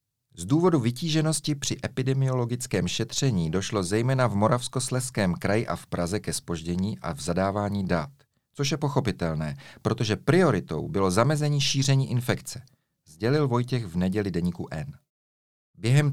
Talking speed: 135 wpm